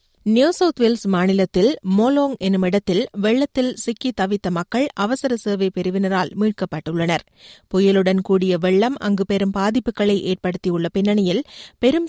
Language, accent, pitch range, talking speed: Tamil, native, 190-240 Hz, 115 wpm